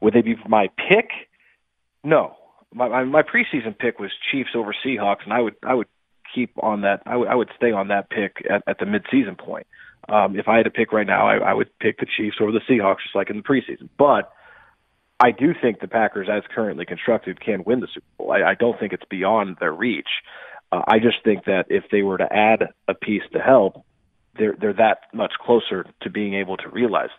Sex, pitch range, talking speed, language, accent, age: male, 100-125 Hz, 230 wpm, English, American, 40-59